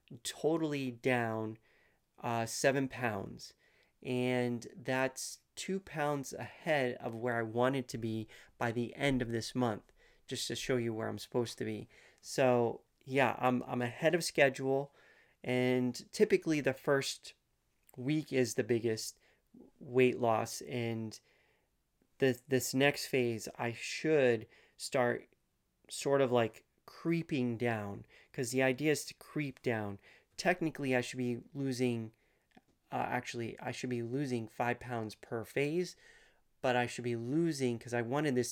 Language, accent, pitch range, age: English, American, 115-140 Hz, 30-49